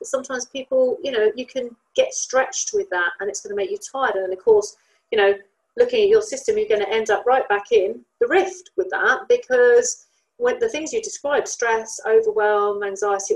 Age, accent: 40-59, British